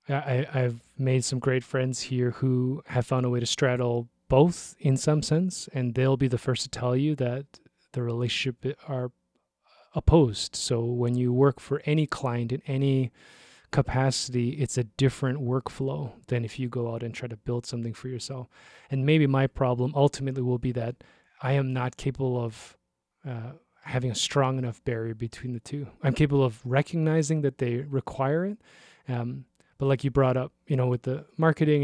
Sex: male